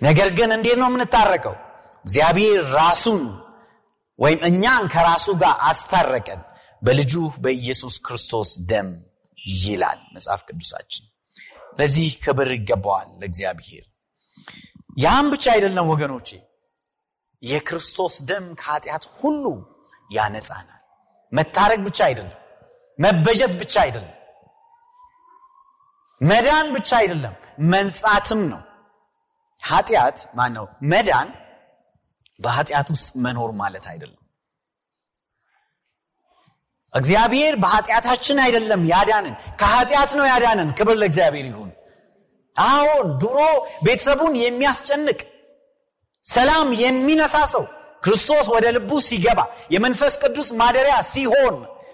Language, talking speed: Amharic, 85 wpm